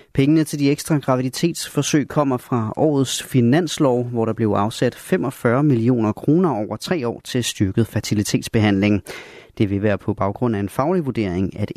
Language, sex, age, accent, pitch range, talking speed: Danish, male, 30-49, native, 105-135 Hz, 165 wpm